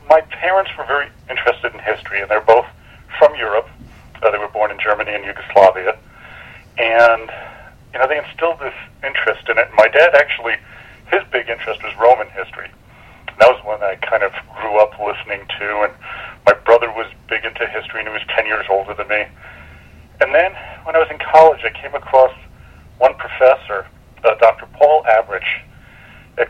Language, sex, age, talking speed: English, male, 40-59, 180 wpm